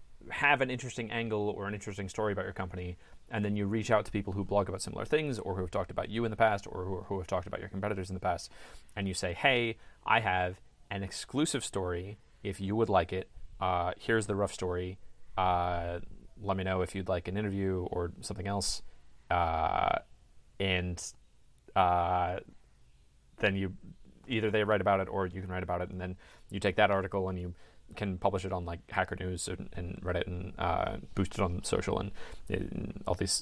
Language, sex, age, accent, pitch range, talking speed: English, male, 30-49, American, 90-105 Hz, 210 wpm